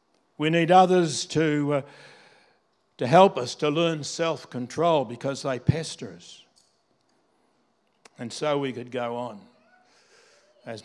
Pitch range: 130-160 Hz